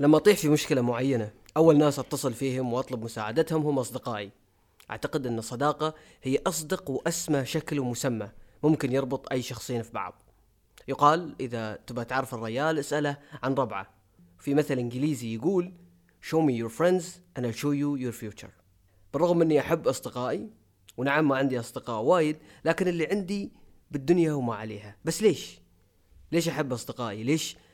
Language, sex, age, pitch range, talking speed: Arabic, female, 30-49, 115-150 Hz, 150 wpm